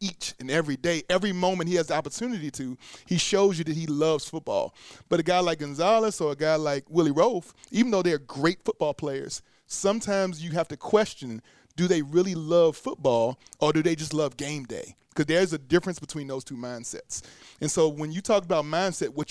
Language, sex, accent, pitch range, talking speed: English, male, American, 140-175 Hz, 215 wpm